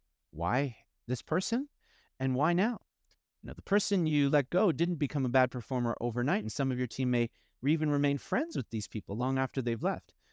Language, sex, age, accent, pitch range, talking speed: English, male, 40-59, American, 115-155 Hz, 200 wpm